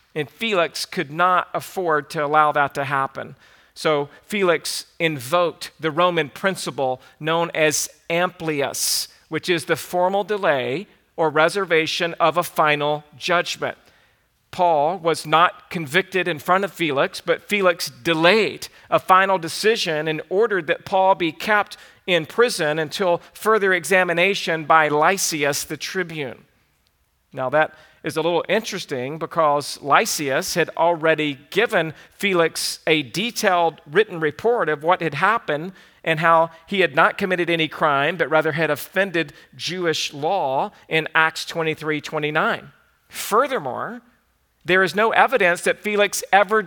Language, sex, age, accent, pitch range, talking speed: English, male, 50-69, American, 155-195 Hz, 135 wpm